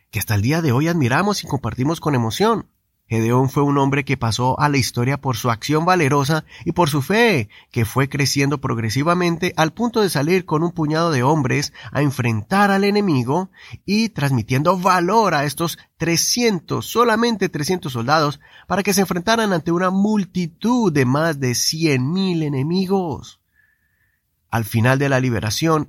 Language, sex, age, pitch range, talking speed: Spanish, male, 30-49, 130-185 Hz, 165 wpm